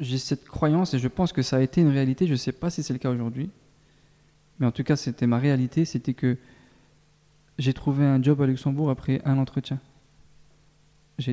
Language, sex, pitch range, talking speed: French, male, 130-155 Hz, 210 wpm